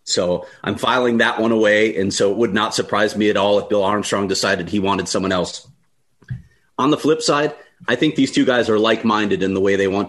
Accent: American